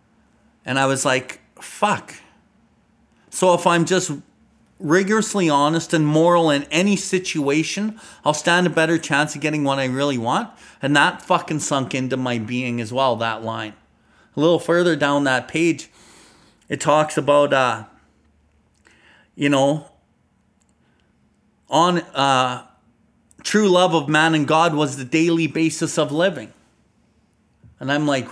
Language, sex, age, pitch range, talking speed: English, male, 30-49, 130-165 Hz, 140 wpm